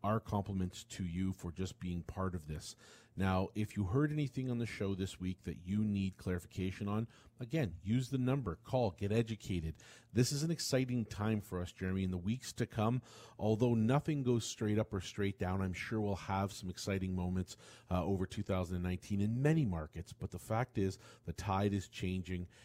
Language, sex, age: English, male, 40-59